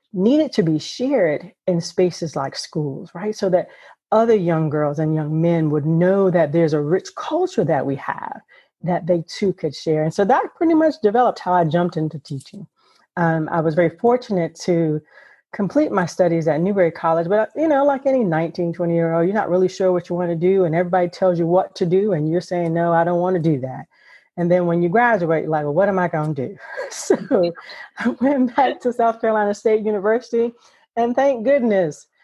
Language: English